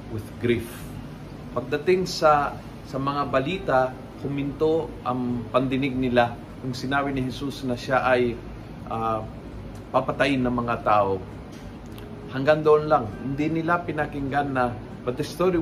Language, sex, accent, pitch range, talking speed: Filipino, male, native, 120-150 Hz, 125 wpm